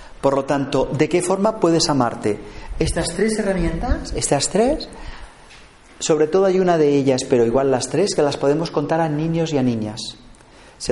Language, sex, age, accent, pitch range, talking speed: Spanish, male, 40-59, Spanish, 135-185 Hz, 180 wpm